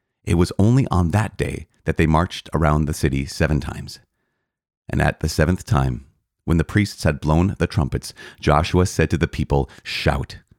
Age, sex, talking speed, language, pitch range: 30-49, male, 180 wpm, English, 75-100 Hz